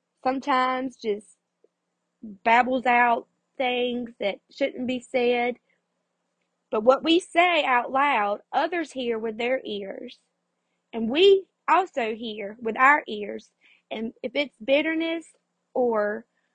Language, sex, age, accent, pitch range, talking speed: English, female, 20-39, American, 225-275 Hz, 115 wpm